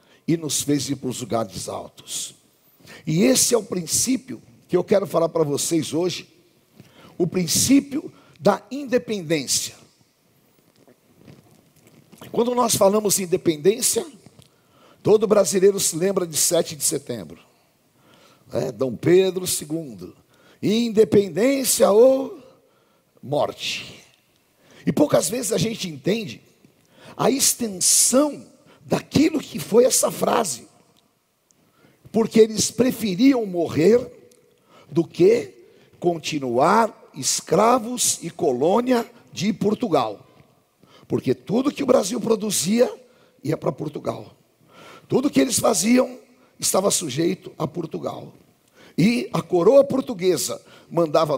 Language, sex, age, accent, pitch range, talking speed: Portuguese, male, 60-79, Brazilian, 170-245 Hz, 105 wpm